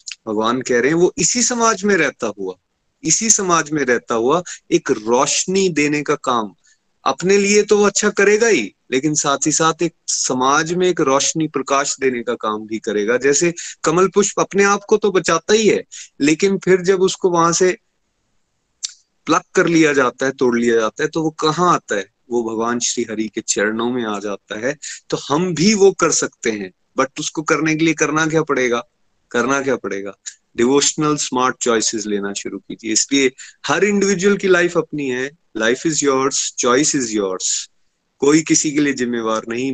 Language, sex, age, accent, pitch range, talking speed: Hindi, male, 30-49, native, 120-175 Hz, 185 wpm